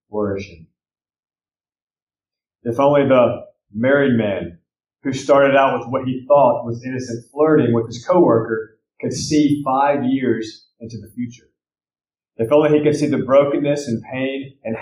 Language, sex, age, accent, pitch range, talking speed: English, male, 30-49, American, 115-145 Hz, 145 wpm